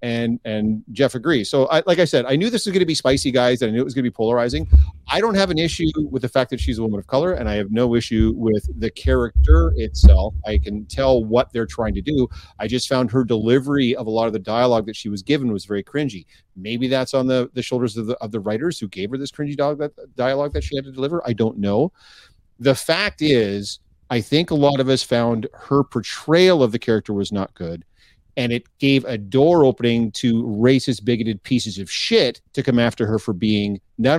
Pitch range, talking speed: 110-140 Hz, 245 wpm